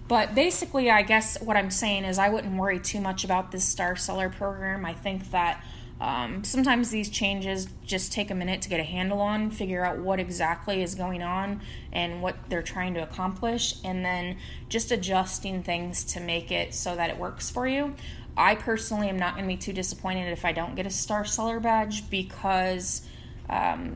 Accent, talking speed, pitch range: American, 200 wpm, 180-215 Hz